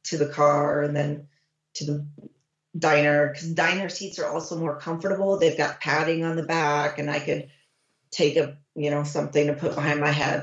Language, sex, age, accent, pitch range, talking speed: English, female, 30-49, American, 150-195 Hz, 195 wpm